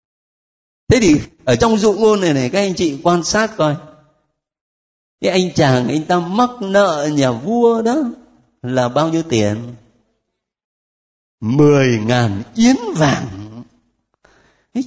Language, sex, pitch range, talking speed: Vietnamese, male, 140-235 Hz, 135 wpm